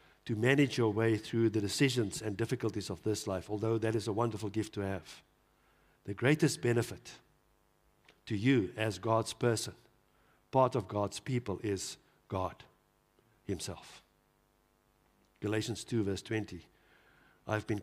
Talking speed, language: 140 wpm, English